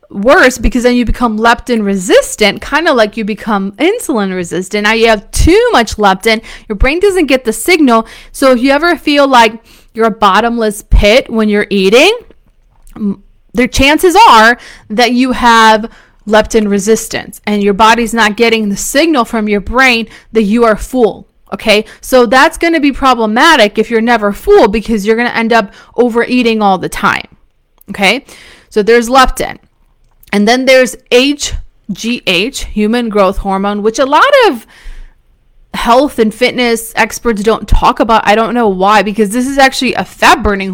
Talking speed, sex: 170 wpm, female